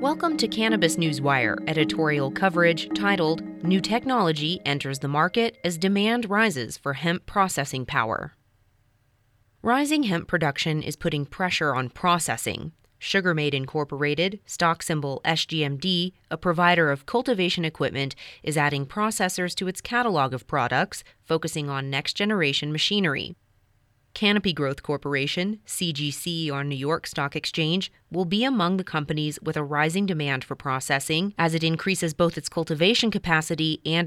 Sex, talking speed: female, 135 wpm